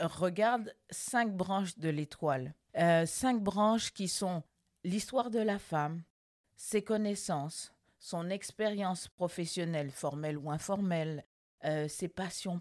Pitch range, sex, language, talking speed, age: 160-195 Hz, female, French, 120 wpm, 50-69